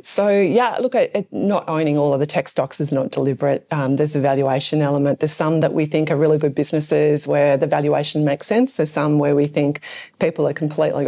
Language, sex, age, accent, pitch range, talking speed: English, female, 30-49, Australian, 145-160 Hz, 215 wpm